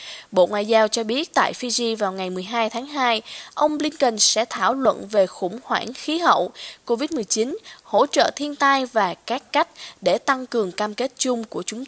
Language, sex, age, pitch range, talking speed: Vietnamese, female, 10-29, 215-275 Hz, 190 wpm